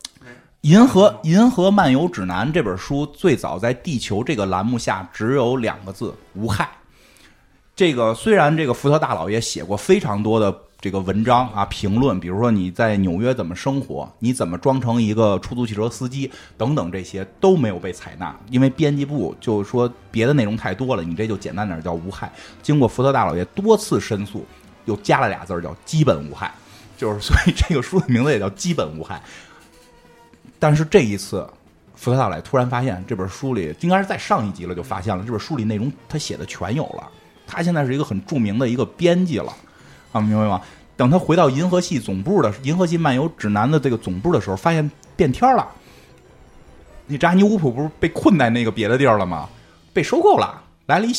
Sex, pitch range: male, 100-150 Hz